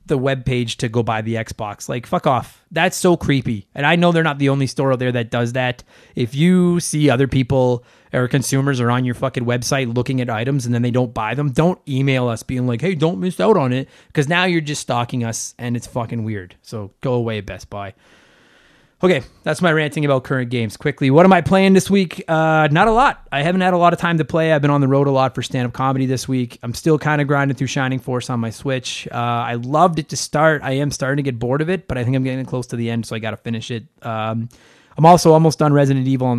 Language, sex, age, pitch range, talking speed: English, male, 20-39, 120-145 Hz, 265 wpm